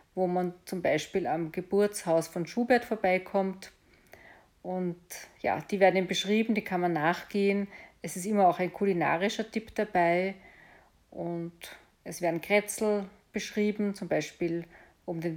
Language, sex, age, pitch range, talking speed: German, female, 40-59, 175-210 Hz, 135 wpm